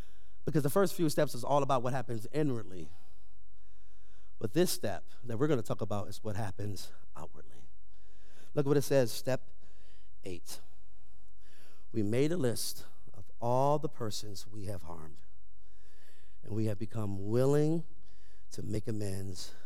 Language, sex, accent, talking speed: English, male, American, 155 wpm